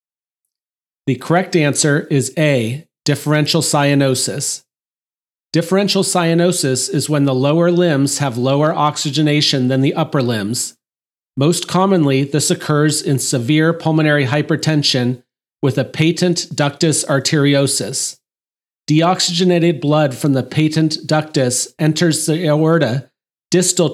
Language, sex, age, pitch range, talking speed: English, male, 40-59, 140-165 Hz, 110 wpm